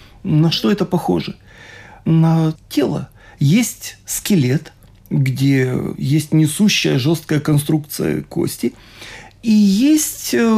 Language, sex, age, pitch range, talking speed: Russian, male, 40-59, 150-195 Hz, 90 wpm